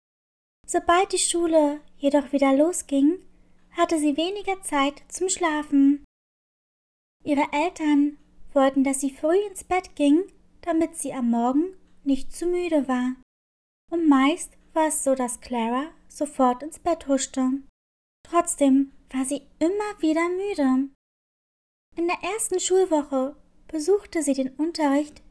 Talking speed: 130 wpm